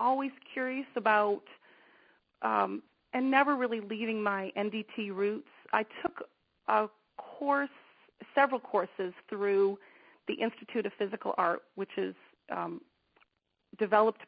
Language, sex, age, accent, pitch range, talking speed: English, female, 30-49, American, 195-245 Hz, 115 wpm